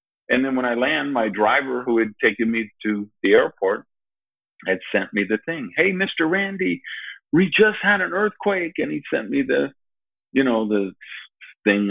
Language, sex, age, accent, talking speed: English, male, 50-69, American, 180 wpm